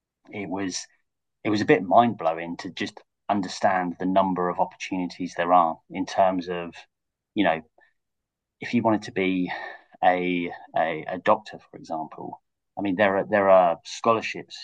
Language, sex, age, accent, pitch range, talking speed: English, male, 30-49, British, 90-100 Hz, 165 wpm